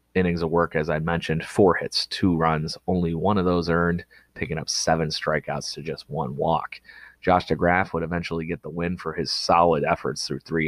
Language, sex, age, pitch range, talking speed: English, male, 30-49, 80-90 Hz, 200 wpm